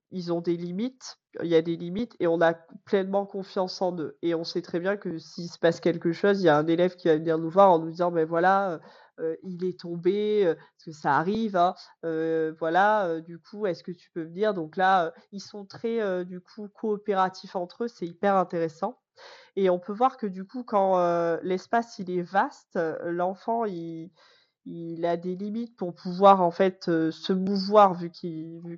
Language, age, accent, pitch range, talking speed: French, 20-39, French, 165-195 Hz, 225 wpm